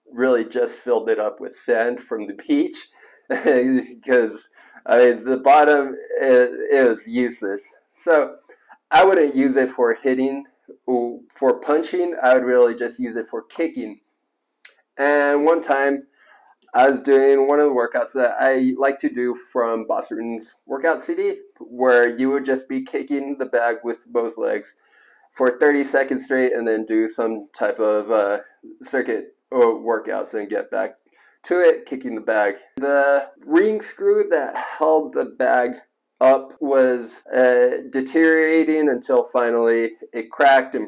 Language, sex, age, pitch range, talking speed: English, male, 20-39, 115-150 Hz, 150 wpm